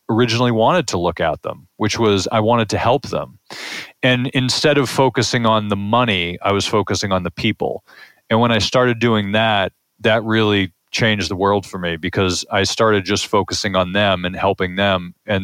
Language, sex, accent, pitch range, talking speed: English, male, American, 95-115 Hz, 195 wpm